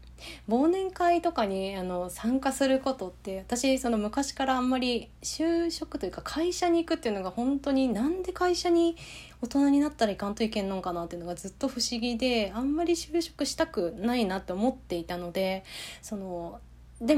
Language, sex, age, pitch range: Japanese, female, 20-39, 180-255 Hz